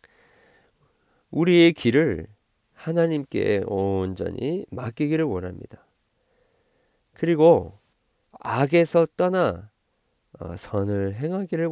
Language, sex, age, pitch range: Korean, male, 40-59, 100-145 Hz